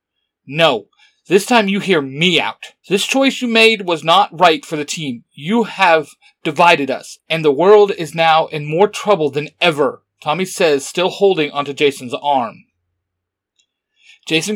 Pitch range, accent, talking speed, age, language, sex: 145-195 Hz, American, 160 wpm, 40-59, English, male